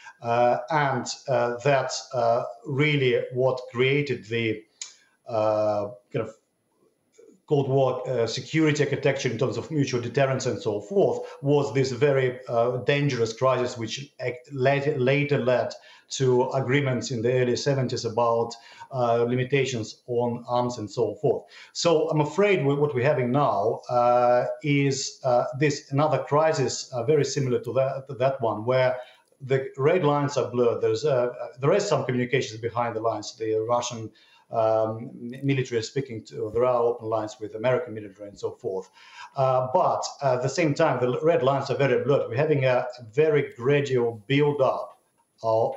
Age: 50-69